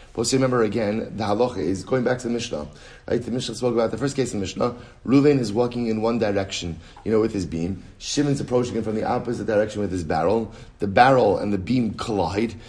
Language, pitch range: English, 105-140 Hz